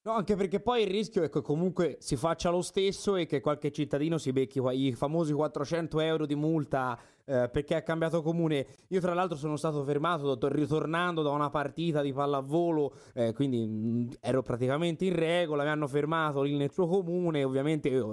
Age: 20-39